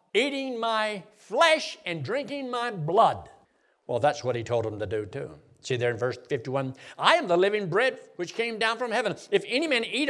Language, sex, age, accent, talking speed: English, male, 60-79, American, 210 wpm